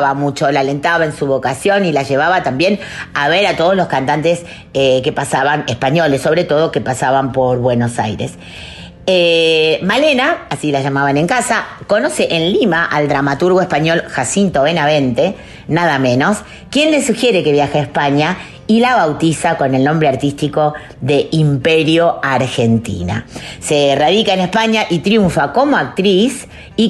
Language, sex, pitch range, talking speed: Spanish, female, 135-175 Hz, 155 wpm